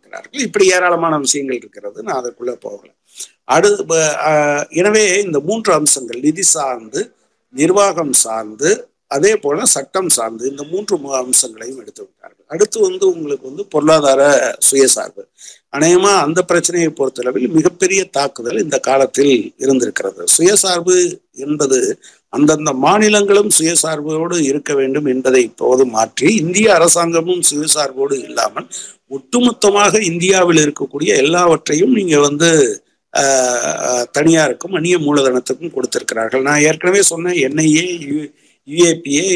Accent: native